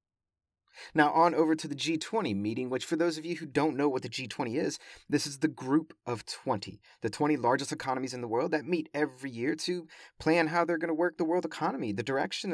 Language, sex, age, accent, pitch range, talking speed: English, male, 30-49, American, 120-160 Hz, 230 wpm